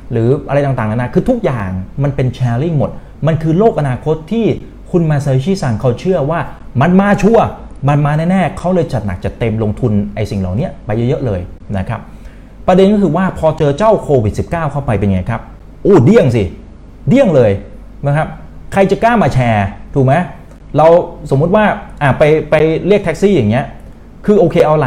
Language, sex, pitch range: Thai, male, 110-160 Hz